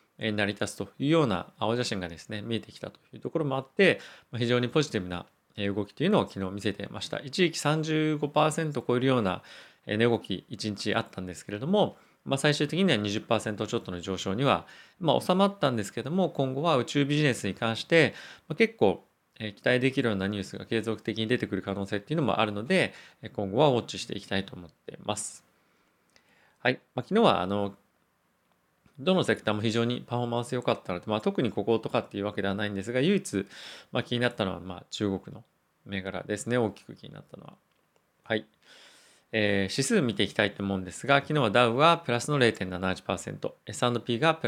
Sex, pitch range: male, 100-140 Hz